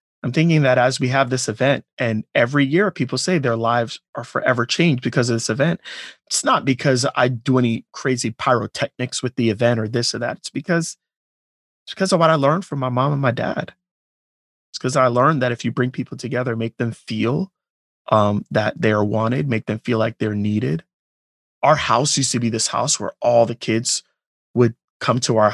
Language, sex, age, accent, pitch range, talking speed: English, male, 30-49, American, 115-140 Hz, 210 wpm